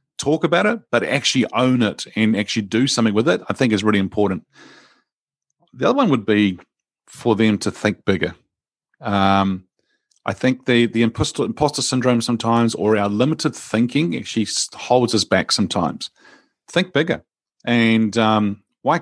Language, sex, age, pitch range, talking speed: English, male, 40-59, 105-130 Hz, 160 wpm